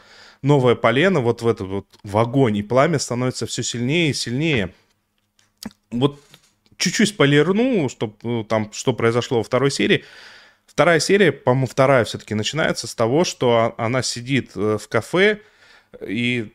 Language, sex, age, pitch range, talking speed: Russian, male, 20-39, 110-155 Hz, 140 wpm